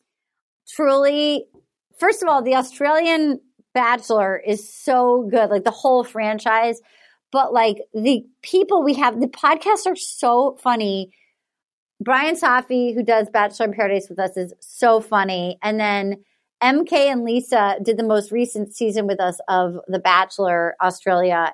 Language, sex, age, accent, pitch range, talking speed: English, female, 40-59, American, 210-275 Hz, 150 wpm